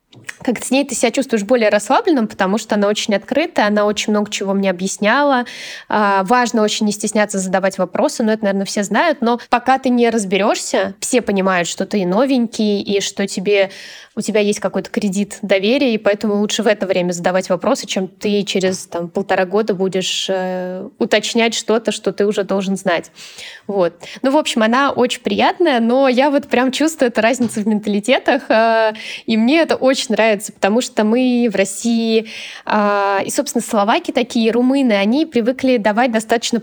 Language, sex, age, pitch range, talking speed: Russian, female, 20-39, 205-255 Hz, 175 wpm